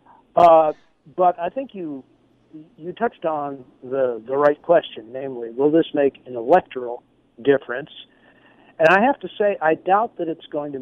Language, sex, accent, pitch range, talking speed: English, male, American, 130-175 Hz, 165 wpm